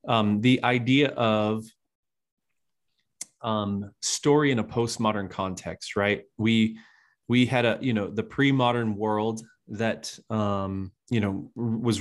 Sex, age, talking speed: male, 30-49, 130 wpm